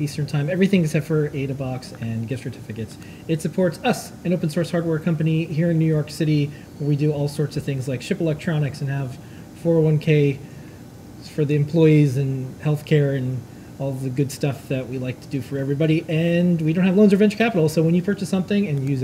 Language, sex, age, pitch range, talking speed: English, male, 30-49, 135-165 Hz, 210 wpm